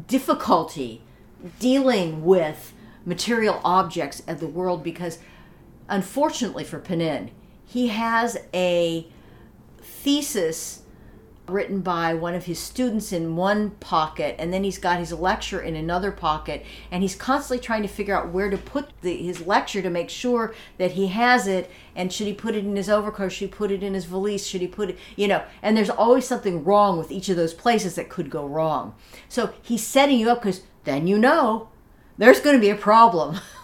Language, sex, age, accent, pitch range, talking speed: English, female, 50-69, American, 165-220 Hz, 185 wpm